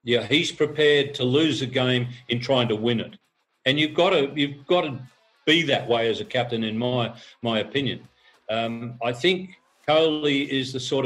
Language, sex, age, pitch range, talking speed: Tamil, male, 50-69, 120-145 Hz, 195 wpm